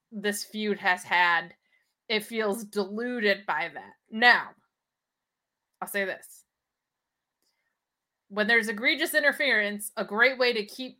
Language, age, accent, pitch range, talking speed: English, 20-39, American, 200-240 Hz, 120 wpm